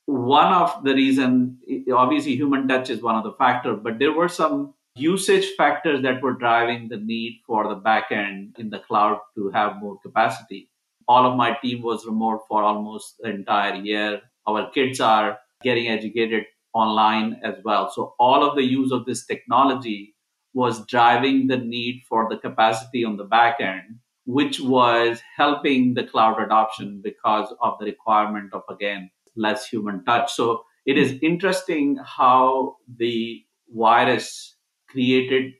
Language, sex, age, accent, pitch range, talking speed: English, male, 50-69, Indian, 110-135 Hz, 155 wpm